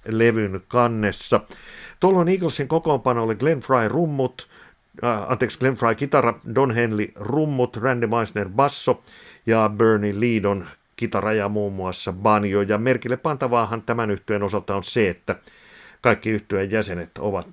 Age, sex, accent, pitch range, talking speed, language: 60-79, male, native, 95-120 Hz, 135 wpm, Finnish